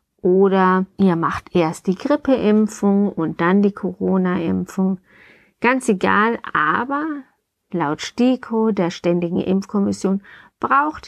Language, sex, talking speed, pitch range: German, female, 105 wpm, 175-210 Hz